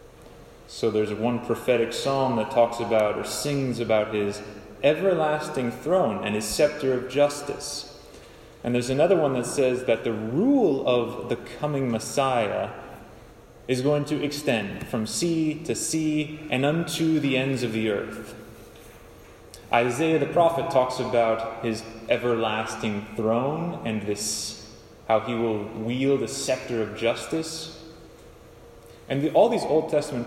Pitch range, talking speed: 115-145 Hz, 140 wpm